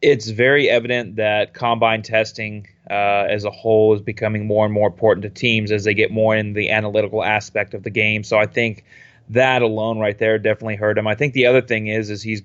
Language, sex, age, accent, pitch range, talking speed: English, male, 20-39, American, 105-115 Hz, 225 wpm